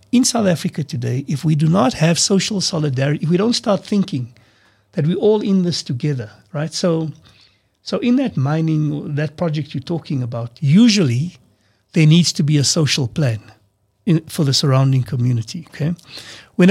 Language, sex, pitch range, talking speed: English, male, 130-180 Hz, 170 wpm